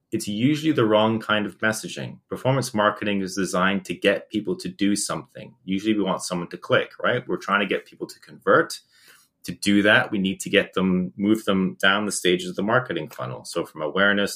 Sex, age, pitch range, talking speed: male, 30-49, 90-110 Hz, 215 wpm